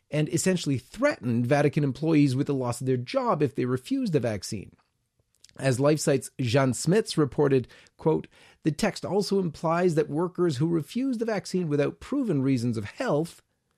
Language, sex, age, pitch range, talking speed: English, male, 40-59, 120-165 Hz, 160 wpm